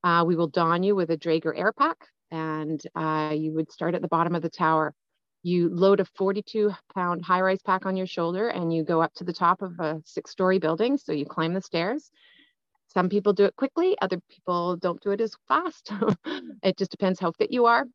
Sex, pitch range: female, 160-200 Hz